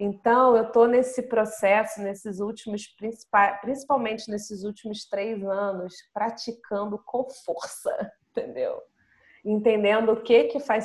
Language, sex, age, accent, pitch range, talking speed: Portuguese, female, 30-49, Brazilian, 190-245 Hz, 115 wpm